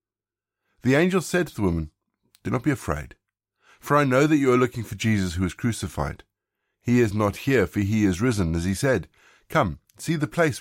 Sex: male